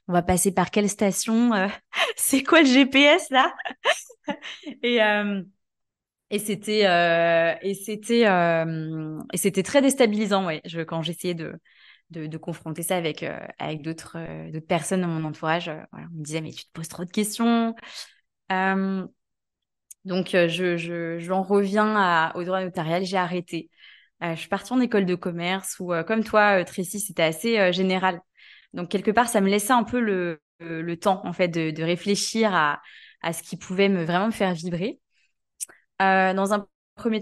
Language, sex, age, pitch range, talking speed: French, female, 20-39, 170-210 Hz, 160 wpm